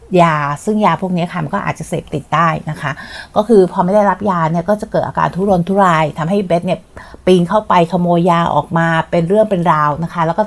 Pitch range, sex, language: 165-205 Hz, female, Thai